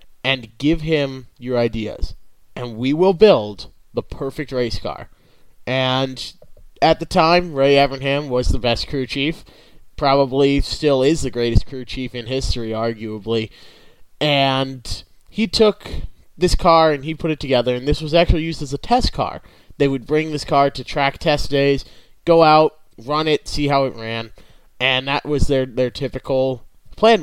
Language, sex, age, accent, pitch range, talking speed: English, male, 30-49, American, 120-155 Hz, 170 wpm